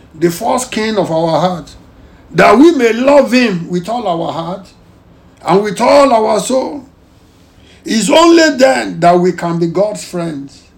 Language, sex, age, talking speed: English, male, 60-79, 160 wpm